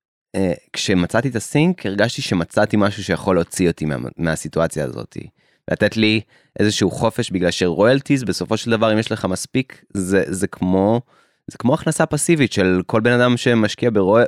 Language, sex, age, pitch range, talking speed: Hebrew, male, 20-39, 90-120 Hz, 170 wpm